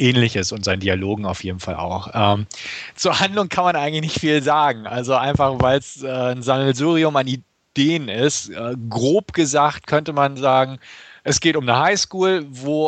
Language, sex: German, male